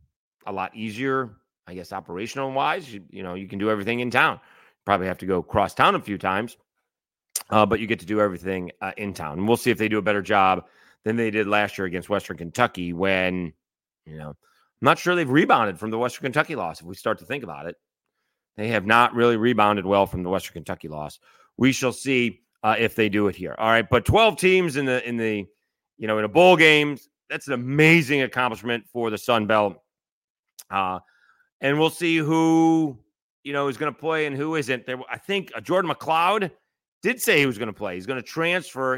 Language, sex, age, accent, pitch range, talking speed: English, male, 30-49, American, 105-140 Hz, 220 wpm